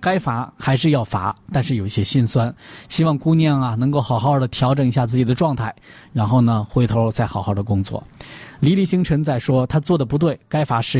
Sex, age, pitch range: male, 20-39, 115-150 Hz